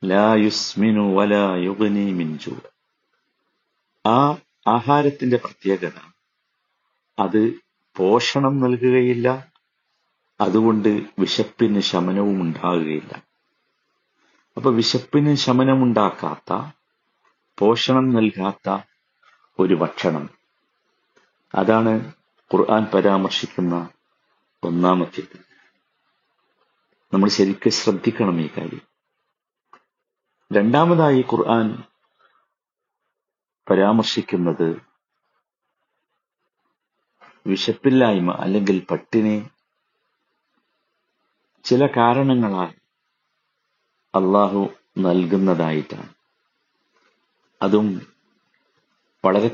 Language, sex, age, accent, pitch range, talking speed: Malayalam, male, 50-69, native, 95-115 Hz, 45 wpm